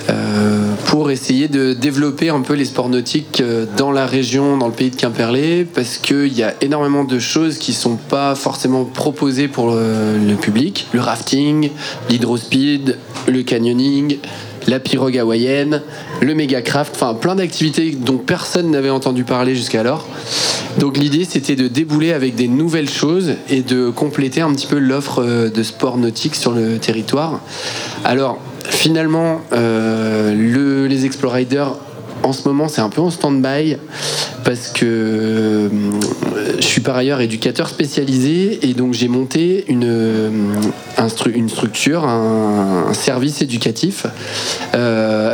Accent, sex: French, male